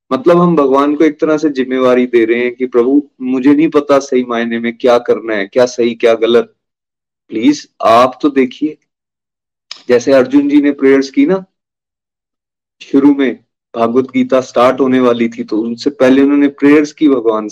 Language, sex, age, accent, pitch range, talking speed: Hindi, male, 30-49, native, 125-165 Hz, 180 wpm